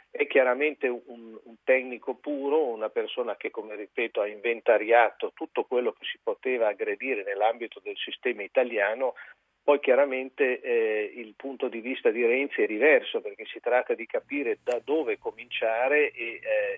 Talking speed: 155 wpm